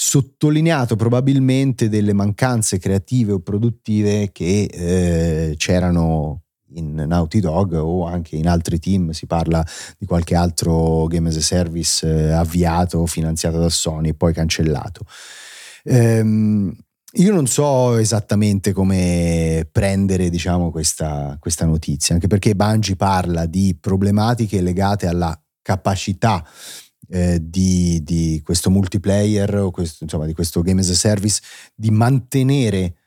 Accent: native